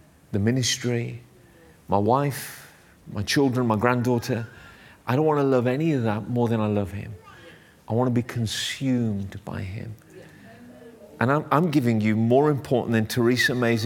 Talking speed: 165 wpm